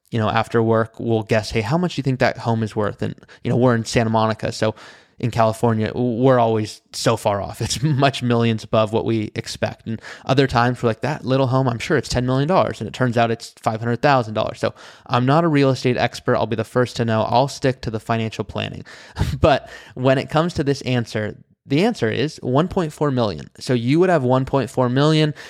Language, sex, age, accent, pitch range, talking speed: English, male, 20-39, American, 115-140 Hz, 220 wpm